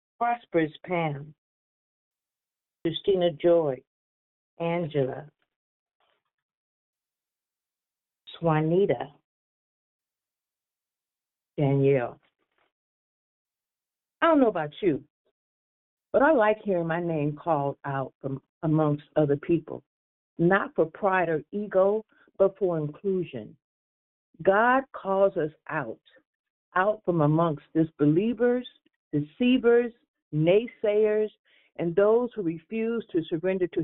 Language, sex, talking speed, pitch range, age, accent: English, female, 85 wpm, 160-235 Hz, 50-69, American